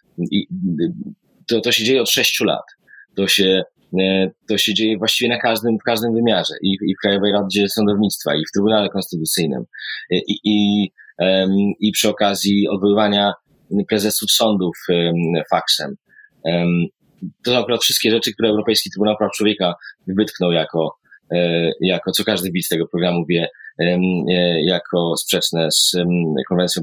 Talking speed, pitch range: 135 wpm, 90-110 Hz